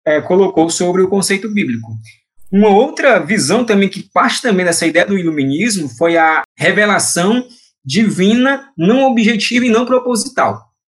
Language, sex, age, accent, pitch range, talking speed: Portuguese, male, 20-39, Brazilian, 150-220 Hz, 140 wpm